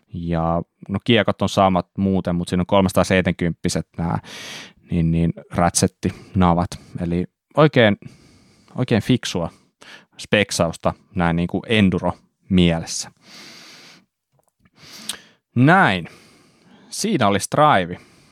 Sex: male